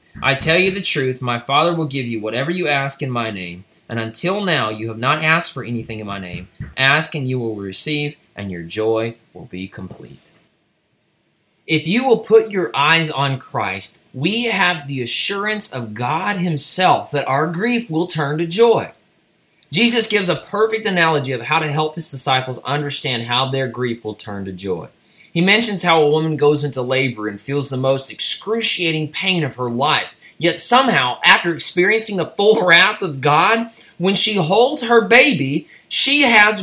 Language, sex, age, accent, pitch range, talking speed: English, male, 20-39, American, 130-220 Hz, 185 wpm